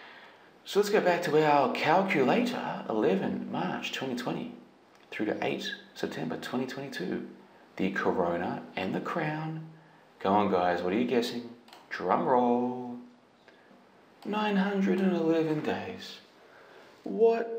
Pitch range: 90-135 Hz